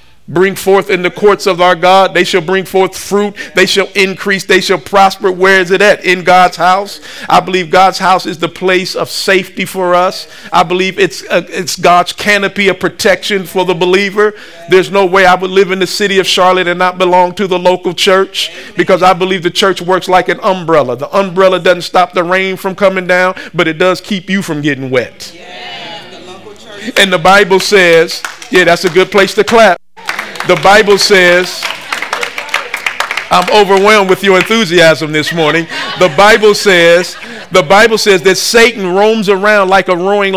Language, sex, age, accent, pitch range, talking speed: English, male, 50-69, American, 180-205 Hz, 185 wpm